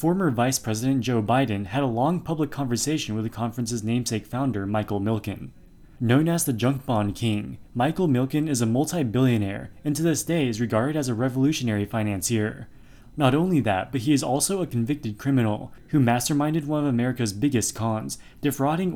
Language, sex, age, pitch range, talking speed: English, male, 20-39, 110-140 Hz, 175 wpm